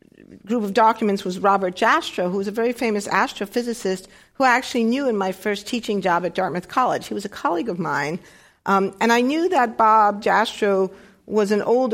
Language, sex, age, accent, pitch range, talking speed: English, female, 50-69, American, 190-235 Hz, 200 wpm